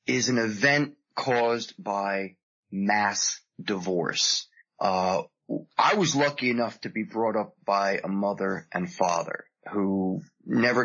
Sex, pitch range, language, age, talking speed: male, 100-135 Hz, English, 20-39, 125 wpm